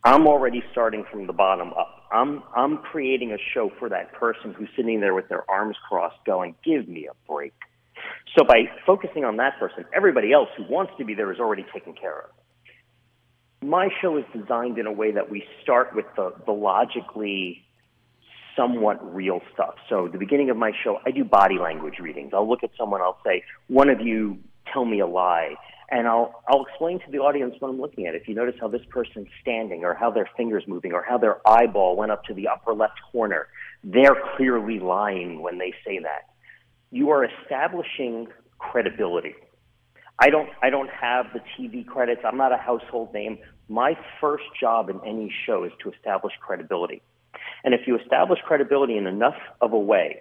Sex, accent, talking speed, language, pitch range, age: male, American, 195 wpm, English, 110-140 Hz, 40-59